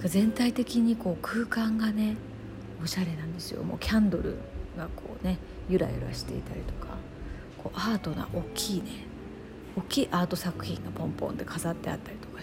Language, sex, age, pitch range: Japanese, female, 40-59, 165-220 Hz